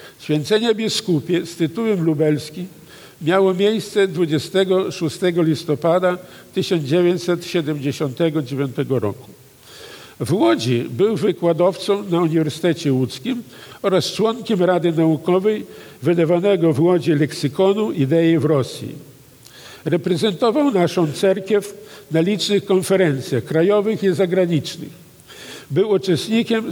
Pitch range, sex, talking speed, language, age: 150-195 Hz, male, 90 wpm, Polish, 50-69